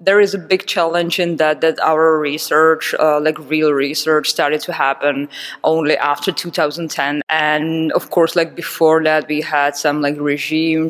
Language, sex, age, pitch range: English, female, 20-39, 145-165 Hz